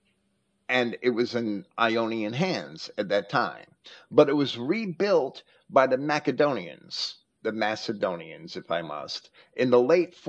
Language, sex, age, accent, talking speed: English, male, 50-69, American, 140 wpm